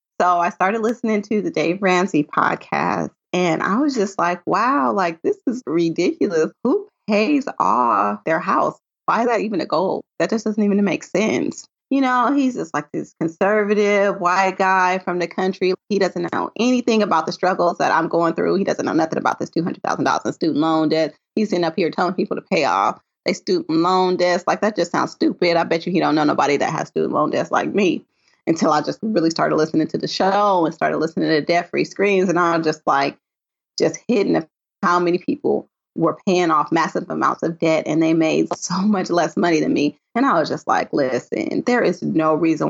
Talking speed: 215 wpm